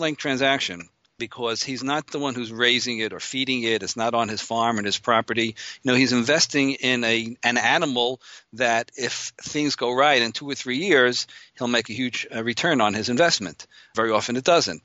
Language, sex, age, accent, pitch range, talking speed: English, male, 50-69, American, 115-135 Hz, 205 wpm